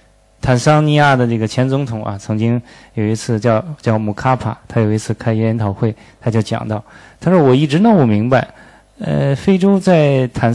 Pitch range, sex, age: 115-160 Hz, male, 20-39